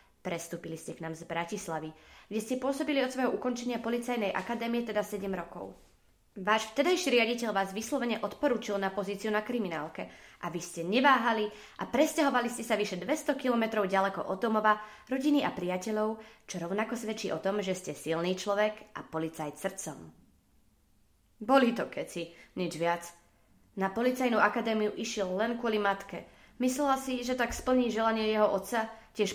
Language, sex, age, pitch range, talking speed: Czech, female, 20-39, 180-225 Hz, 155 wpm